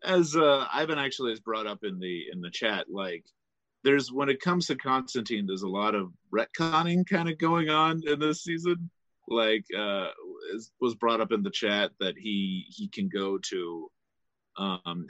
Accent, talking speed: American, 185 wpm